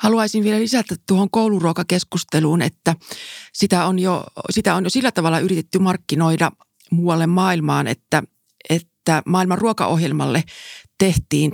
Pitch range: 160-190 Hz